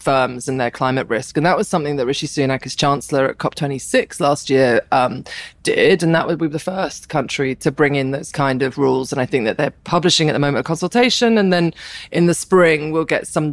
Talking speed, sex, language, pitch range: 235 wpm, female, English, 140-175 Hz